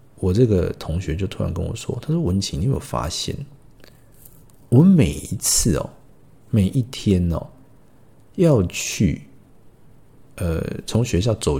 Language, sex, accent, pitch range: Chinese, male, native, 95-140 Hz